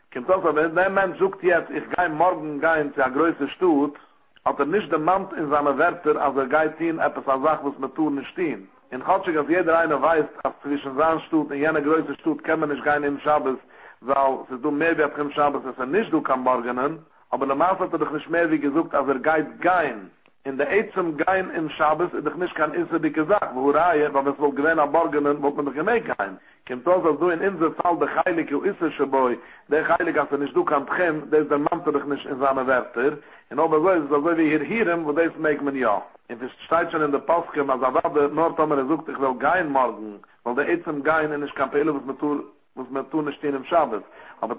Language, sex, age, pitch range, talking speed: English, male, 60-79, 140-165 Hz, 170 wpm